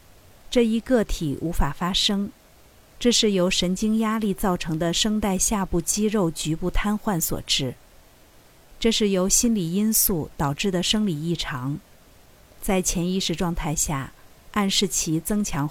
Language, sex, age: Chinese, female, 50-69